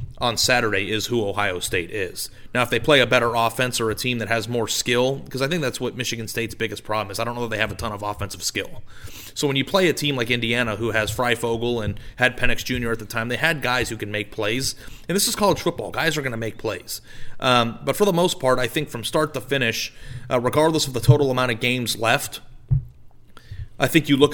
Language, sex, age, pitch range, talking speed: English, male, 30-49, 110-135 Hz, 255 wpm